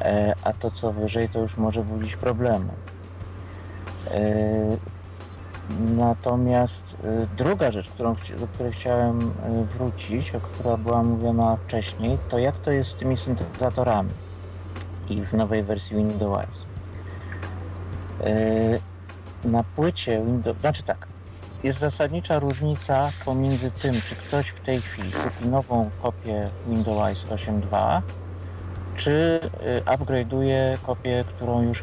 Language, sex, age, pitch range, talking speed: Polish, male, 50-69, 95-120 Hz, 110 wpm